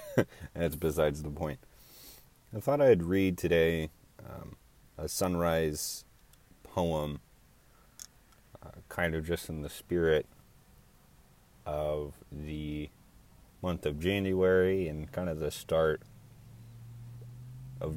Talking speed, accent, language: 105 wpm, American, English